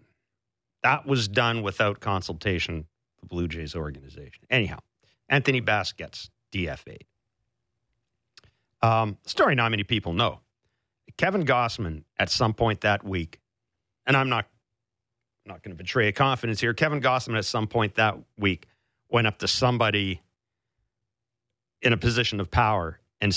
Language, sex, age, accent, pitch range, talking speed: English, male, 50-69, American, 105-120 Hz, 140 wpm